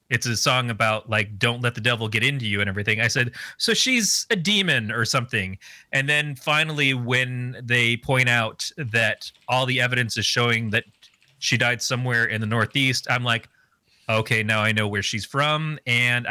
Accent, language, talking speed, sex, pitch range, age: American, English, 190 wpm, male, 110-140 Hz, 30-49